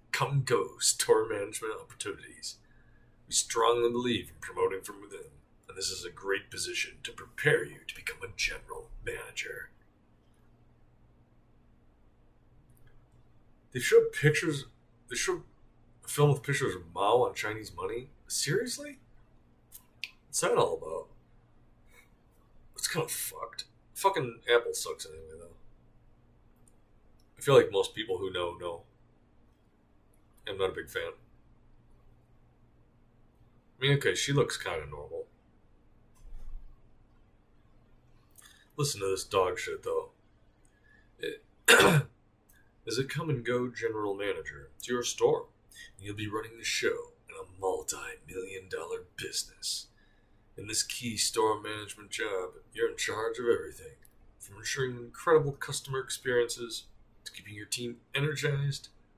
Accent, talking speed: American, 125 wpm